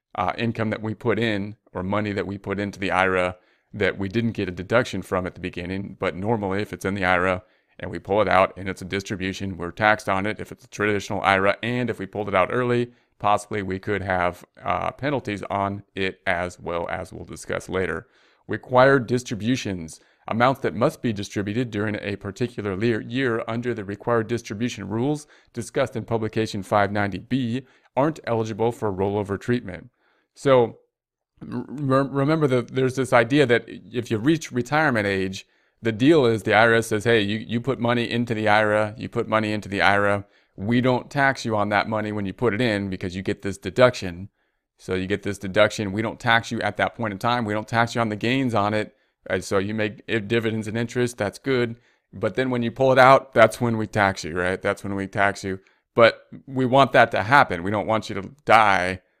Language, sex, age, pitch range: English, male, 30-49, 100-120 Hz